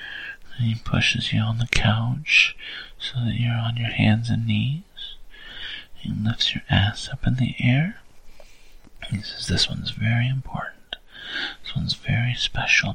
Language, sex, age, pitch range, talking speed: English, male, 40-59, 120-150 Hz, 155 wpm